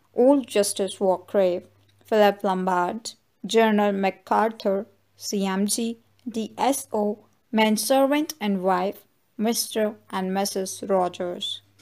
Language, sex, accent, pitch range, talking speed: English, female, Indian, 190-225 Hz, 80 wpm